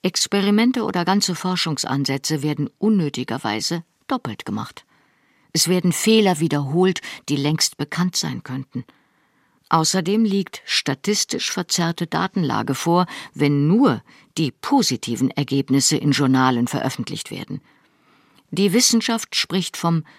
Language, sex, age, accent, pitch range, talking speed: German, female, 50-69, German, 145-200 Hz, 105 wpm